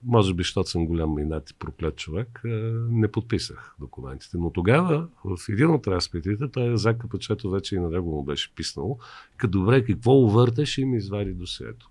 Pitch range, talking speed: 90-125 Hz, 180 wpm